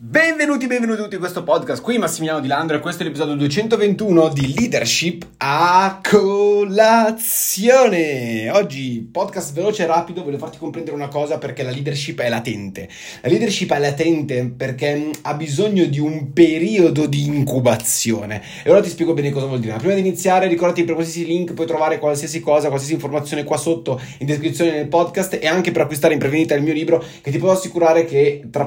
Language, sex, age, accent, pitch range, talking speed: Italian, male, 20-39, native, 130-175 Hz, 185 wpm